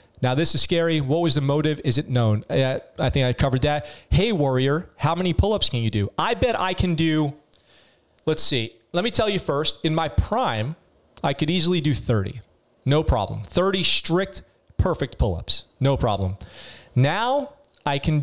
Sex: male